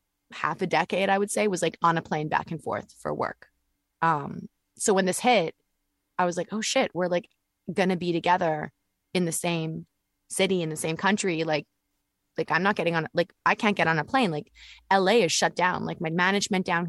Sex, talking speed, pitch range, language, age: female, 220 wpm, 165-200 Hz, English, 20-39